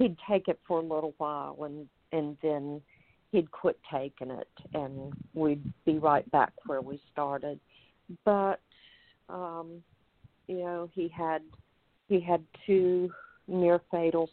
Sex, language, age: female, English, 50-69